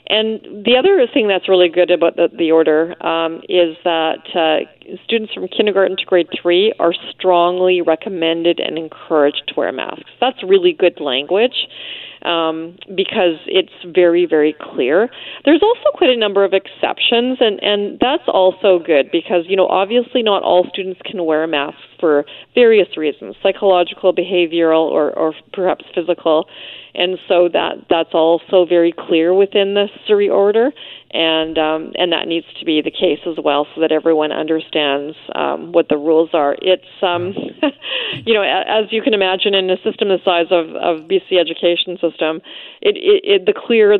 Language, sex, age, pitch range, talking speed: English, female, 40-59, 165-200 Hz, 175 wpm